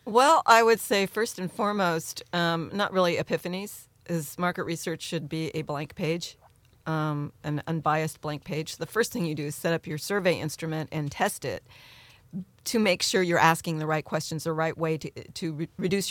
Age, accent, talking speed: 40-59, American, 195 wpm